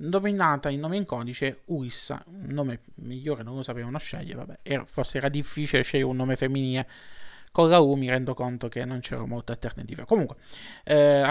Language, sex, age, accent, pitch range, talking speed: Italian, male, 20-39, native, 130-160 Hz, 180 wpm